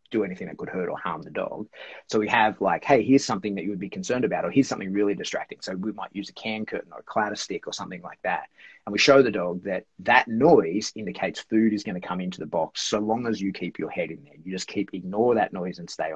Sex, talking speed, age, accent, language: male, 280 wpm, 30-49, Australian, English